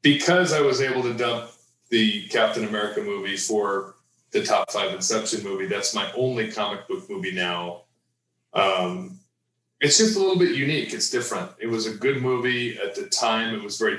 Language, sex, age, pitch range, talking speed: English, male, 30-49, 100-120 Hz, 185 wpm